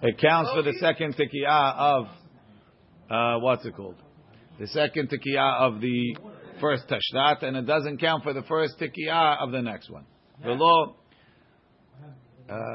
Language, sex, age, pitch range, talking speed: English, male, 50-69, 130-165 Hz, 150 wpm